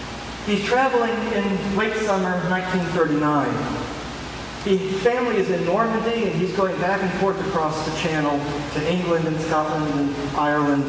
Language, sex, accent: English, male, American